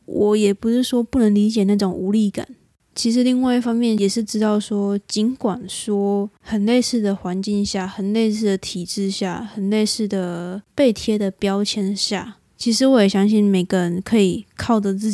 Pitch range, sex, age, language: 195-215 Hz, female, 20-39, Chinese